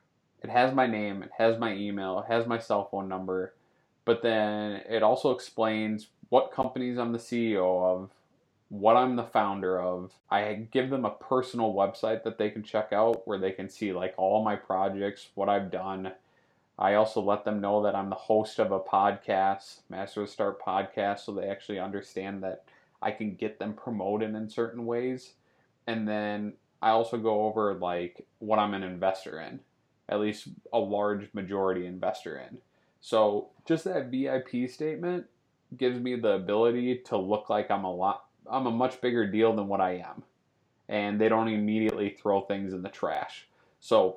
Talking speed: 180 wpm